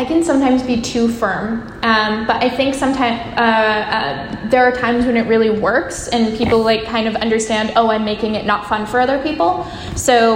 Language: English